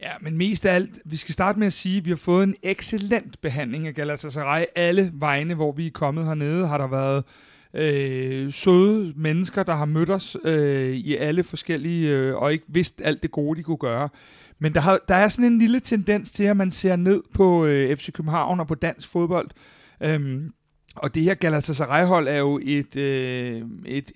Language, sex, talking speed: Danish, male, 210 wpm